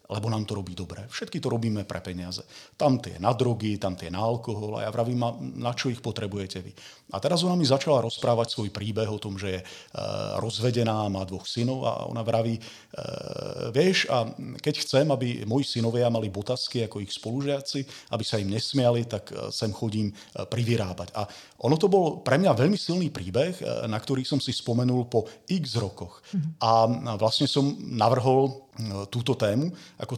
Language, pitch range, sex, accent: Czech, 105-130 Hz, male, native